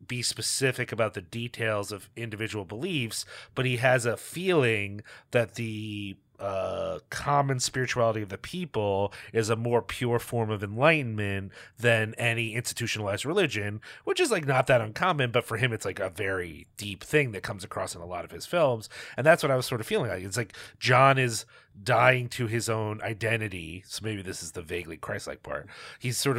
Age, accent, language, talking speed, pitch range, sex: 30-49, American, English, 190 wpm, 105-125 Hz, male